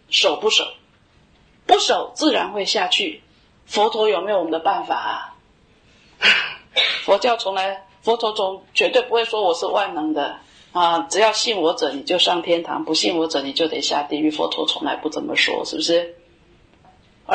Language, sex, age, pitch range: Chinese, female, 30-49, 180-270 Hz